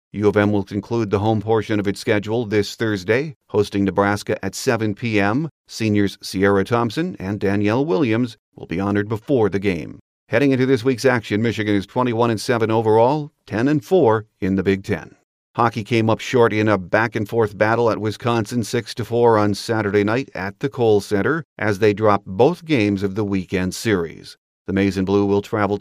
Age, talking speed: 40-59, 200 wpm